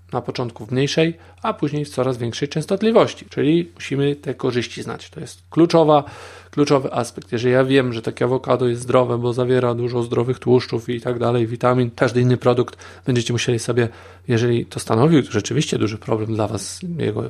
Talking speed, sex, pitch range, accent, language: 175 wpm, male, 115-145 Hz, native, Polish